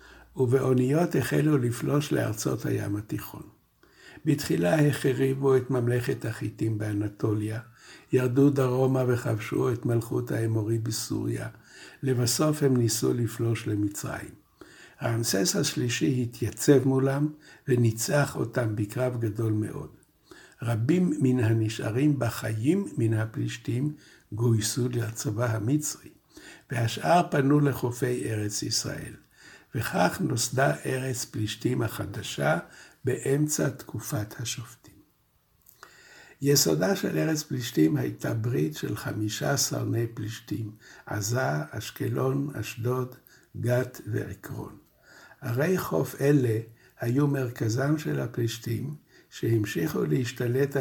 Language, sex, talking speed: Hebrew, male, 95 wpm